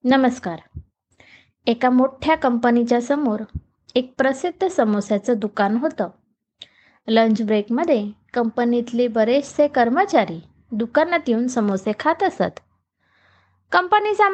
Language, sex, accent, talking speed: Marathi, female, native, 85 wpm